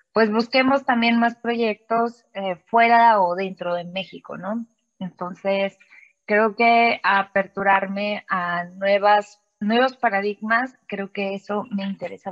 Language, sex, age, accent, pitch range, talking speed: Spanish, female, 20-39, Mexican, 195-230 Hz, 120 wpm